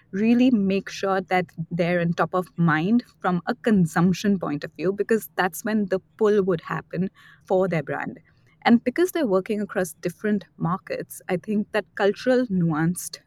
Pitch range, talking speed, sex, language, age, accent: 165-195 Hz, 165 wpm, female, English, 20-39, Indian